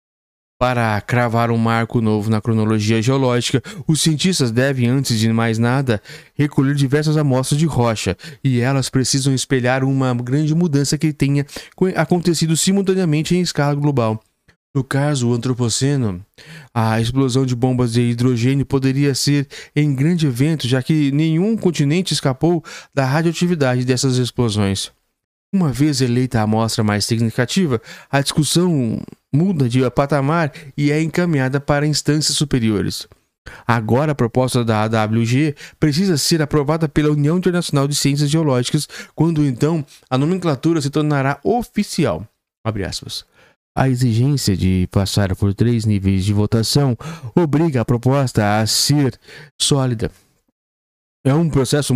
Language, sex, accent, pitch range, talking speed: Portuguese, male, Brazilian, 120-155 Hz, 135 wpm